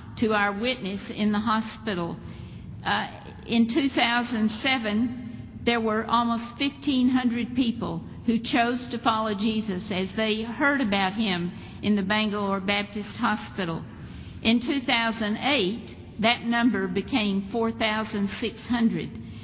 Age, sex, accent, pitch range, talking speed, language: 50-69, female, American, 205-240 Hz, 110 wpm, English